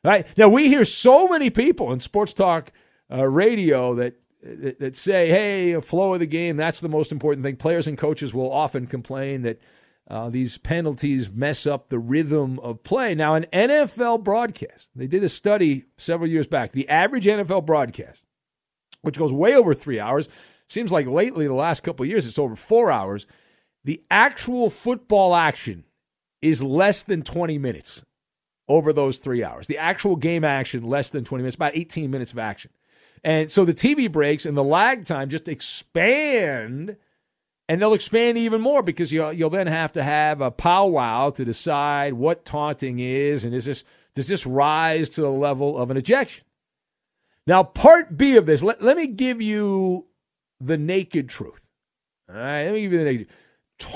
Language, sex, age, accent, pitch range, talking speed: English, male, 50-69, American, 135-195 Hz, 185 wpm